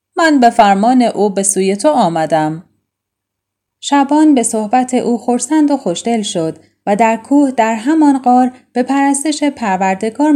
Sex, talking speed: female, 135 wpm